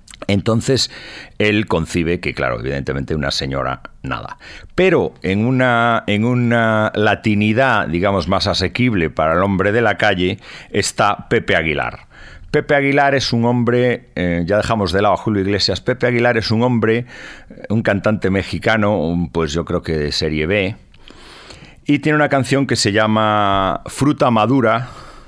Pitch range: 90-115 Hz